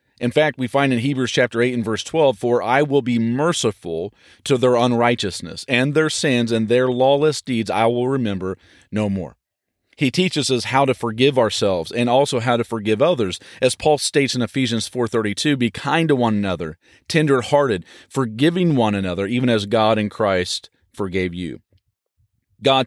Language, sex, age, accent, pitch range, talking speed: English, male, 40-59, American, 105-130 Hz, 175 wpm